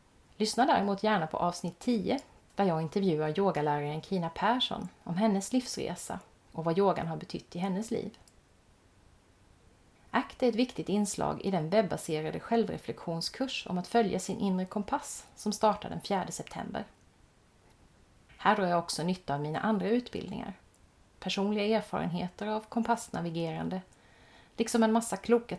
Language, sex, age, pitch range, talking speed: Swedish, female, 30-49, 165-225 Hz, 140 wpm